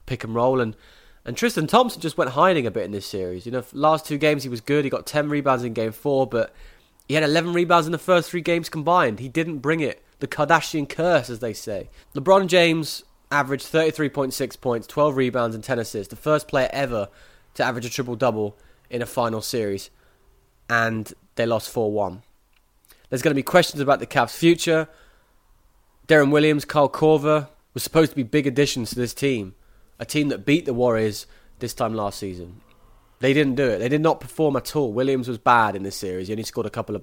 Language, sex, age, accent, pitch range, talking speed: English, male, 20-39, British, 115-150 Hz, 210 wpm